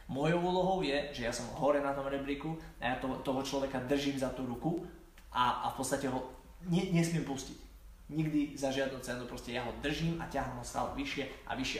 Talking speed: 215 wpm